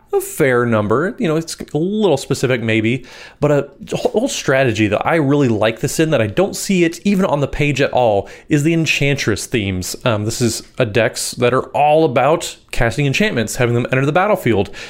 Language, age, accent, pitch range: English, 30-49, American, 120-155 Hz